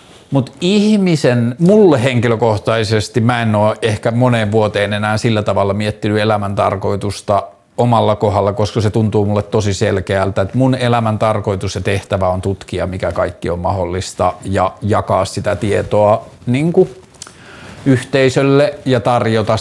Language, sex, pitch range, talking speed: Finnish, male, 100-120 Hz, 130 wpm